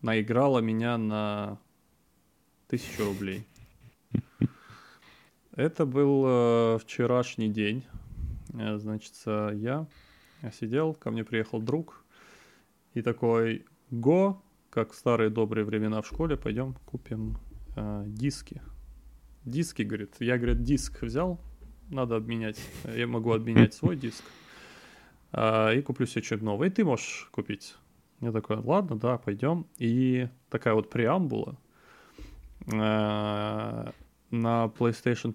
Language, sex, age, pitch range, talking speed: Russian, male, 20-39, 110-125 Hz, 110 wpm